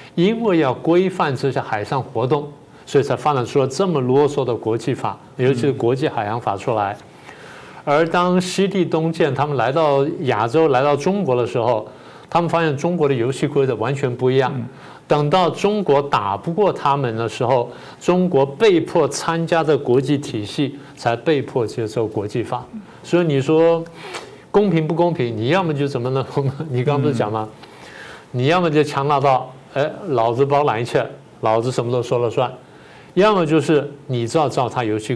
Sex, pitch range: male, 125-160 Hz